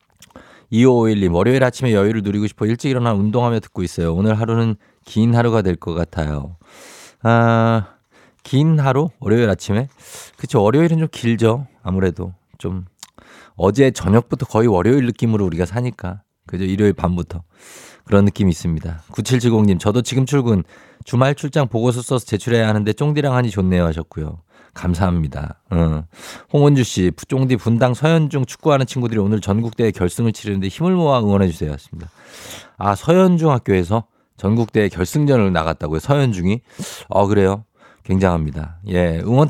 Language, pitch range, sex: Korean, 90-120 Hz, male